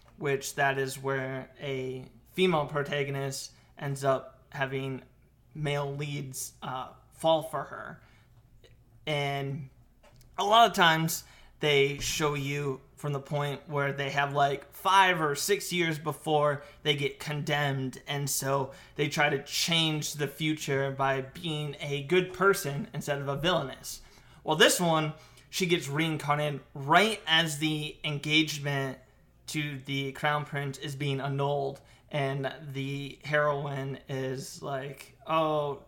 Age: 20-39